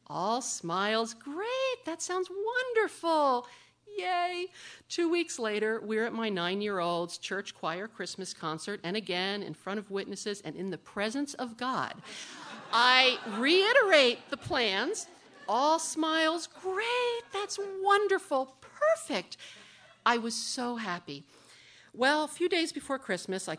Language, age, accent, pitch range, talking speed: English, 50-69, American, 190-280 Hz, 130 wpm